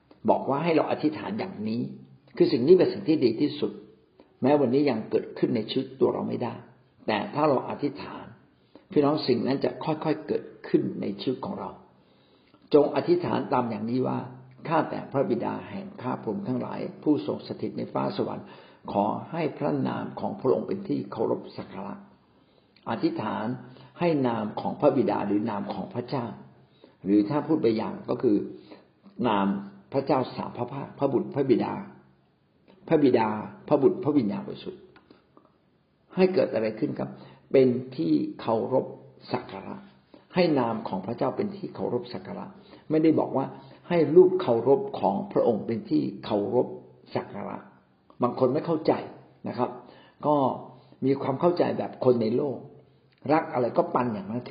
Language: Thai